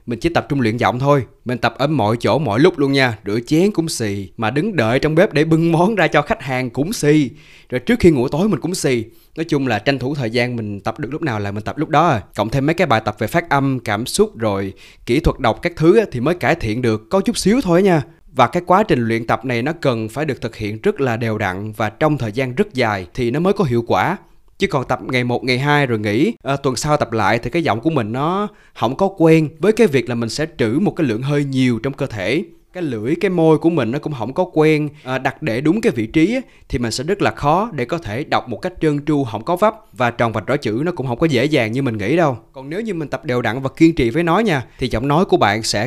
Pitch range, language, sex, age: 115-160 Hz, Vietnamese, male, 20-39